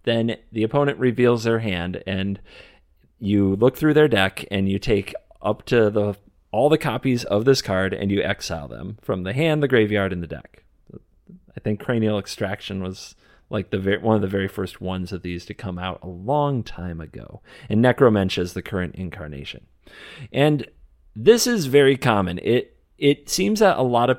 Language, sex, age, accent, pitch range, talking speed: English, male, 30-49, American, 95-130 Hz, 190 wpm